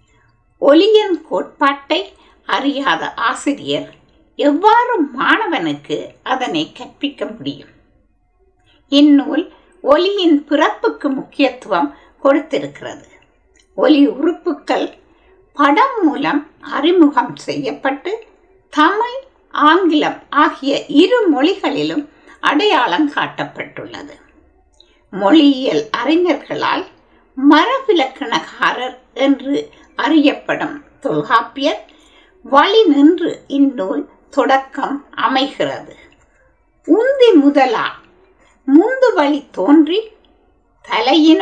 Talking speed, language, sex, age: 50 wpm, Tamil, female, 60-79